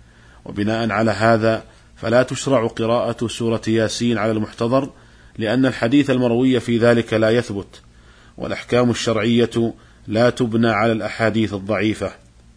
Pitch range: 110-125 Hz